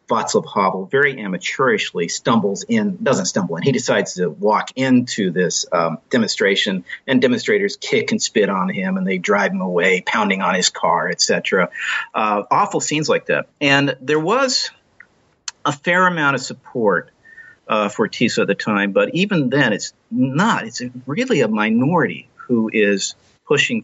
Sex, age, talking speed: male, 50-69, 165 wpm